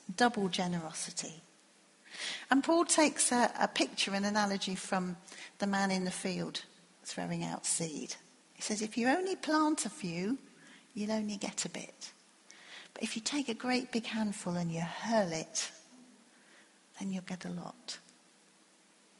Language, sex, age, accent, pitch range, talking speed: English, female, 40-59, British, 175-265 Hz, 155 wpm